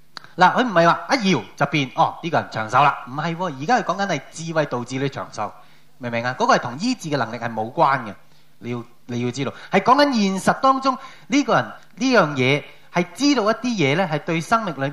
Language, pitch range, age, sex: Chinese, 135-200 Hz, 20-39, male